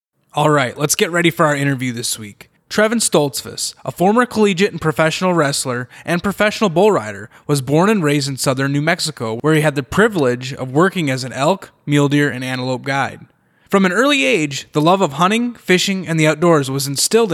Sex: male